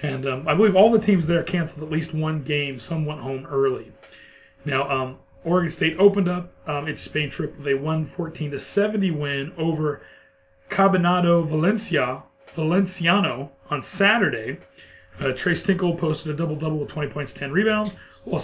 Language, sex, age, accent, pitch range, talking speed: English, male, 30-49, American, 135-180 Hz, 170 wpm